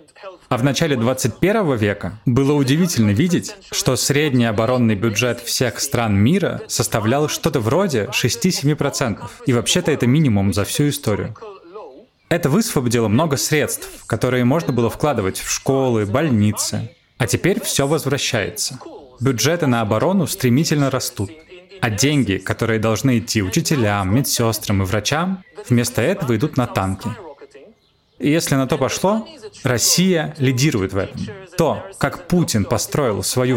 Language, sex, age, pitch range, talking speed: Russian, male, 20-39, 110-145 Hz, 130 wpm